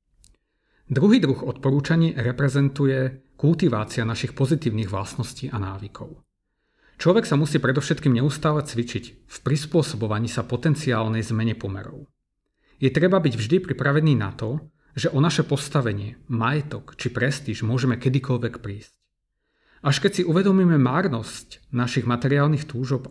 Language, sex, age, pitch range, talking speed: Slovak, male, 40-59, 115-145 Hz, 120 wpm